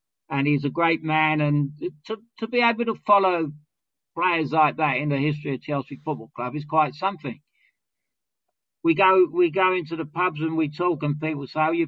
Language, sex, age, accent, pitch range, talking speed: English, male, 60-79, British, 145-185 Hz, 200 wpm